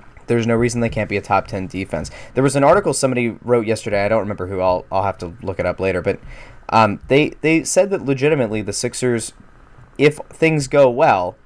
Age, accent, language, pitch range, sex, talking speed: 20-39, American, English, 95-120 Hz, male, 220 wpm